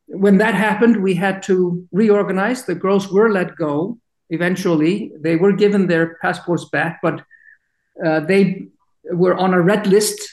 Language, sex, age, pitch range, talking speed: English, male, 50-69, 165-190 Hz, 155 wpm